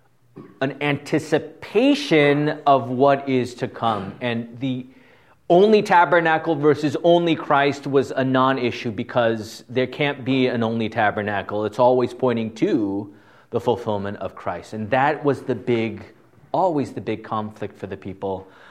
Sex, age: male, 30-49